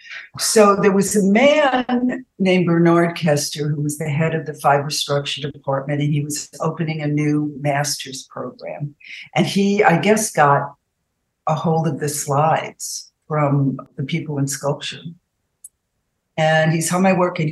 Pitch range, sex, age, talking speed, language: 145-195 Hz, female, 60-79, 160 wpm, English